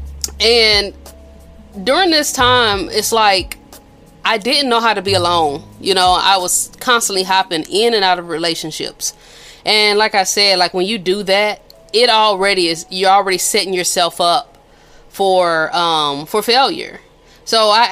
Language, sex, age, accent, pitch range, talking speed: English, female, 20-39, American, 165-200 Hz, 155 wpm